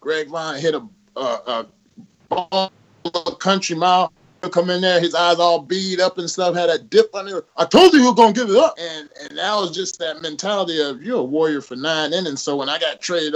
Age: 30-49